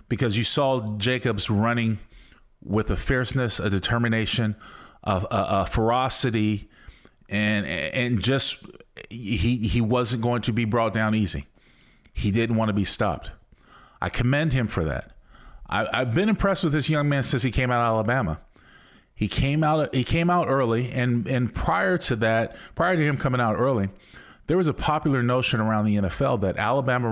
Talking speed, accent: 175 wpm, American